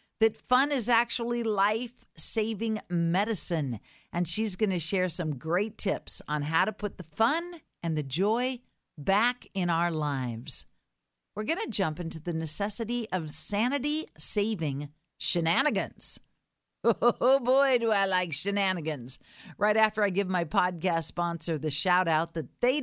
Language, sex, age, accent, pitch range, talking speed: English, female, 50-69, American, 160-220 Hz, 150 wpm